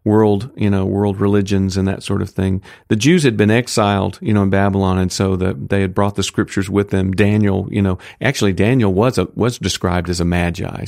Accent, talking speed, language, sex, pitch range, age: American, 225 wpm, English, male, 100-125 Hz, 50-69